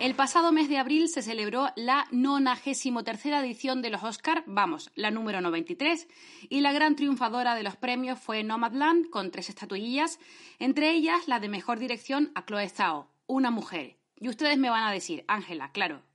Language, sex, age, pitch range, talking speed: Spanish, female, 30-49, 225-300 Hz, 180 wpm